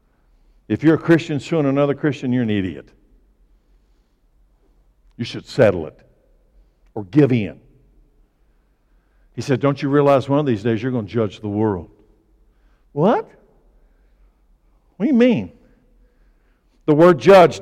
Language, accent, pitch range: English, American, 125-160 Hz